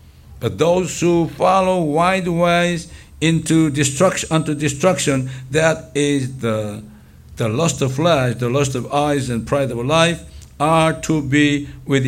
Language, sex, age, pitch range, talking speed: English, male, 60-79, 90-145 Hz, 145 wpm